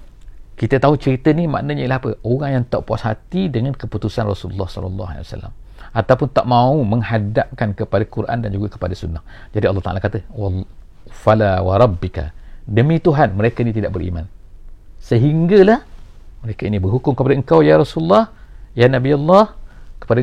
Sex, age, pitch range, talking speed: male, 50-69, 105-150 Hz, 155 wpm